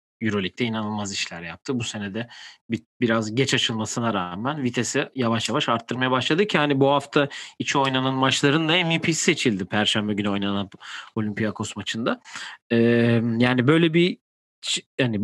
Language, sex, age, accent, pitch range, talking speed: Turkish, male, 40-59, native, 105-150 Hz, 145 wpm